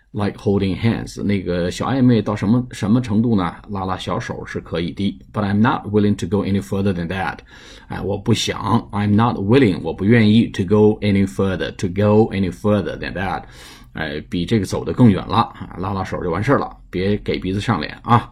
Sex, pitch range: male, 95-115 Hz